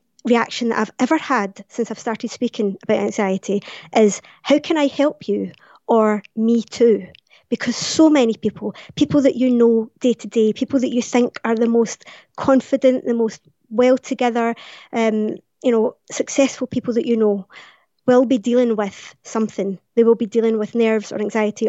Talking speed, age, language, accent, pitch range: 175 wpm, 20-39, English, British, 215-255 Hz